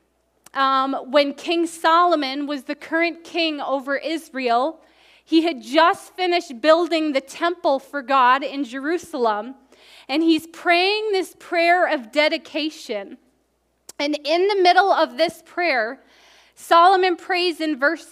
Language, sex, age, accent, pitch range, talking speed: English, female, 20-39, American, 275-340 Hz, 130 wpm